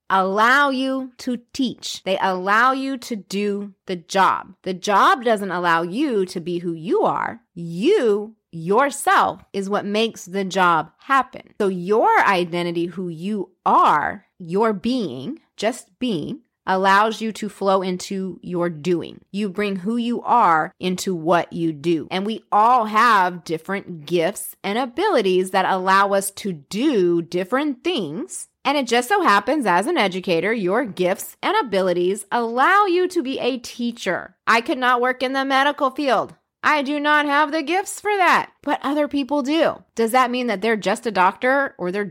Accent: American